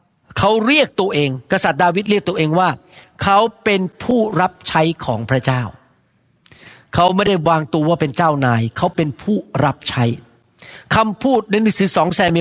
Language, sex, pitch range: Thai, male, 145-200 Hz